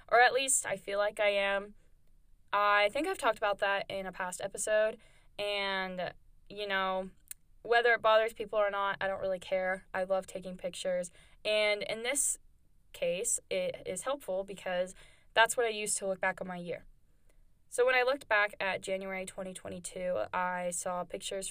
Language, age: English, 10-29